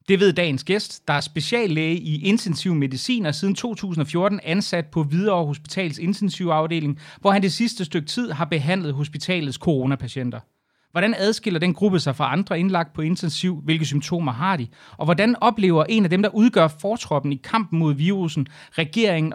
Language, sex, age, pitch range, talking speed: Danish, male, 30-49, 145-195 Hz, 170 wpm